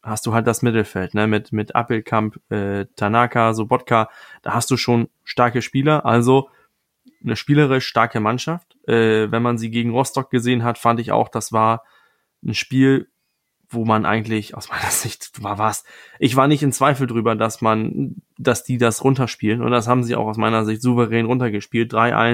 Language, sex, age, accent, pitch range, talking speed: German, male, 20-39, German, 110-130 Hz, 185 wpm